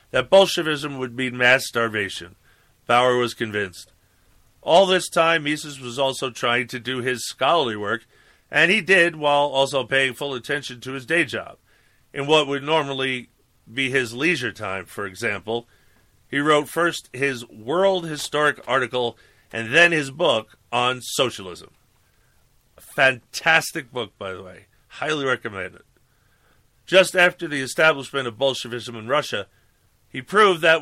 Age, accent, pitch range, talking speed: 40-59, American, 115-155 Hz, 145 wpm